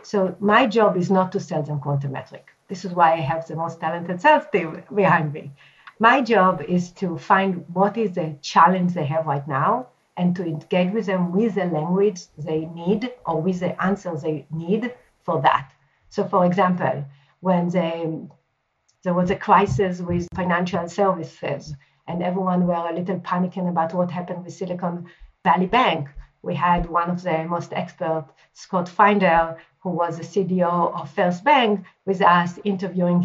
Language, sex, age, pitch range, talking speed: English, female, 50-69, 165-195 Hz, 175 wpm